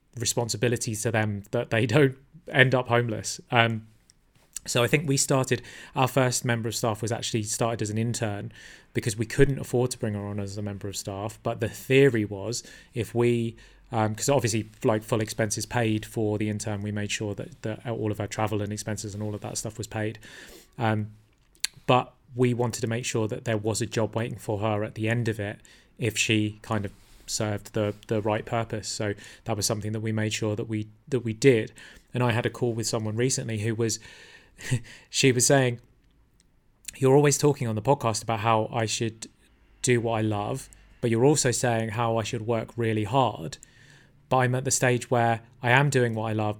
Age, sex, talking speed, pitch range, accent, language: 30-49, male, 210 wpm, 110-125 Hz, British, English